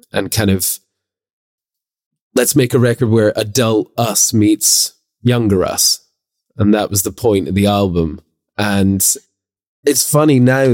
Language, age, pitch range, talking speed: English, 20-39, 95-115 Hz, 140 wpm